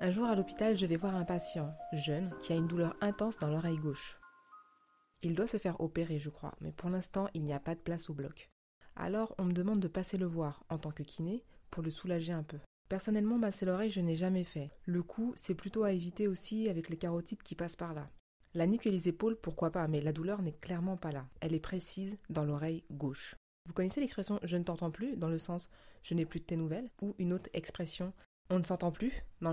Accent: French